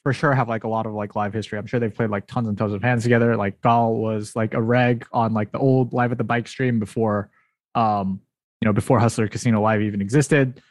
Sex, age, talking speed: male, 20-39, 260 wpm